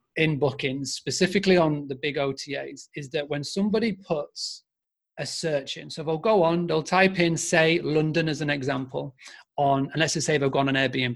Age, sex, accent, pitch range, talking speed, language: 30-49, male, British, 140-180 Hz, 195 wpm, English